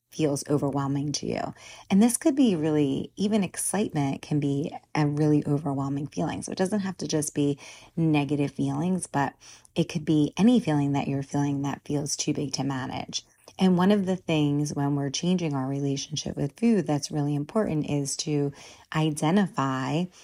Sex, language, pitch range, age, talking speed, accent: female, English, 140-165 Hz, 30-49, 175 wpm, American